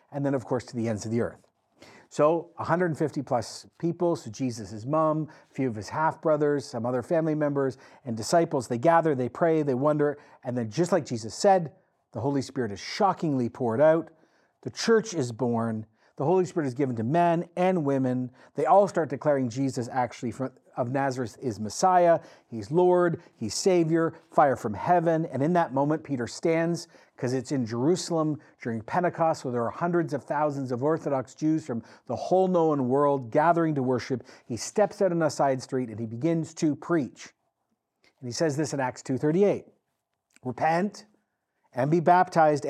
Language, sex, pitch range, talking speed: English, male, 130-165 Hz, 180 wpm